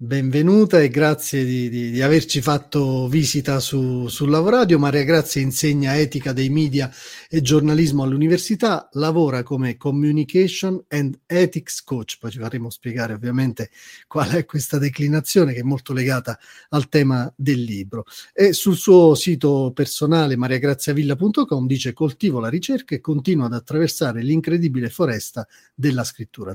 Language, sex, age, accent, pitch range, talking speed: Italian, male, 40-59, native, 125-155 Hz, 140 wpm